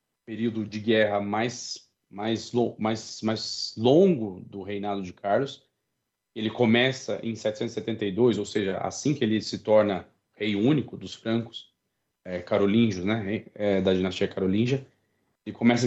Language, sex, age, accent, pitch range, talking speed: Portuguese, male, 40-59, Brazilian, 100-120 Hz, 135 wpm